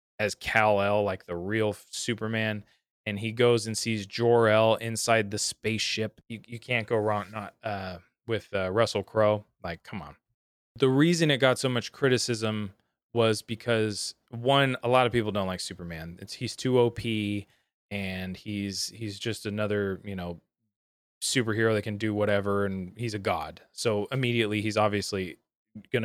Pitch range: 105-125 Hz